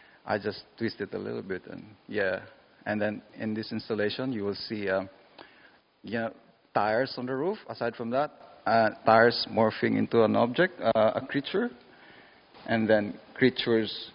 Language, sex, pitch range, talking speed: English, male, 100-115 Hz, 165 wpm